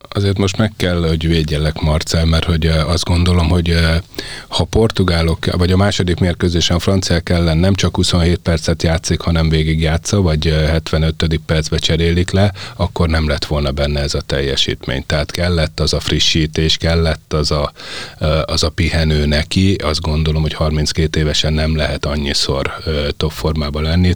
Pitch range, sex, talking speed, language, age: 75-90 Hz, male, 160 wpm, Hungarian, 30-49